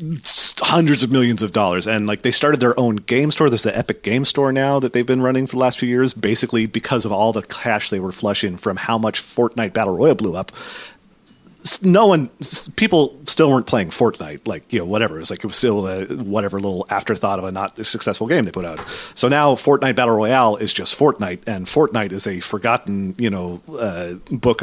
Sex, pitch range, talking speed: male, 95-125 Hz, 220 wpm